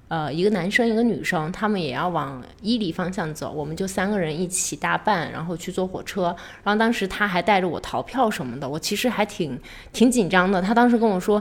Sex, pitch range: female, 175-230 Hz